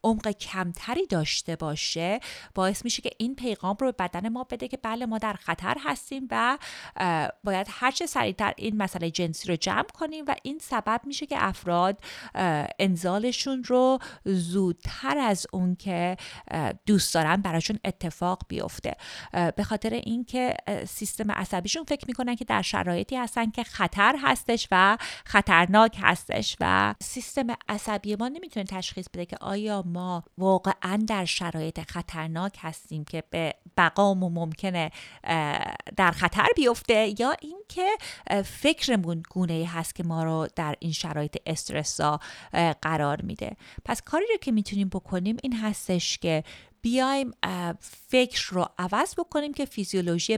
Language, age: Persian, 30-49